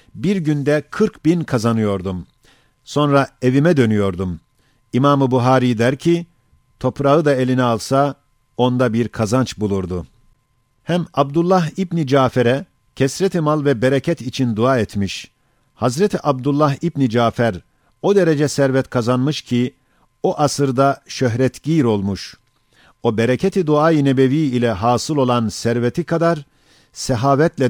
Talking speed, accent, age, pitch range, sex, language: 120 wpm, native, 50-69, 115-150 Hz, male, Turkish